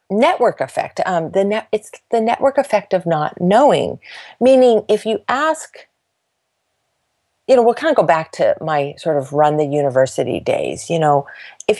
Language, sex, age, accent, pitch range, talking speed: English, female, 40-59, American, 160-215 Hz, 175 wpm